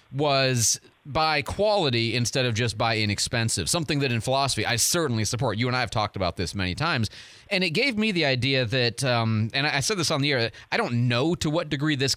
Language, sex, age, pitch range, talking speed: English, male, 30-49, 115-160 Hz, 225 wpm